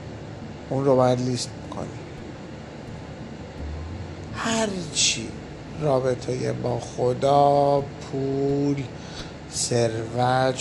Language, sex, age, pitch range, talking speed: Persian, male, 50-69, 120-145 Hz, 55 wpm